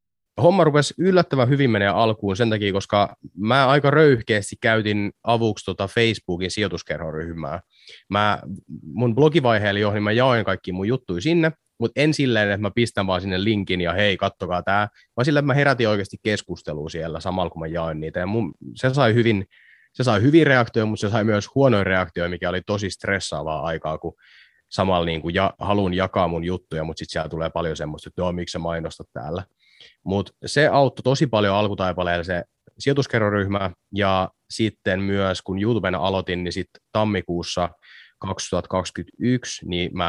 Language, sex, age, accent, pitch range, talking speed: Finnish, male, 30-49, native, 90-115 Hz, 160 wpm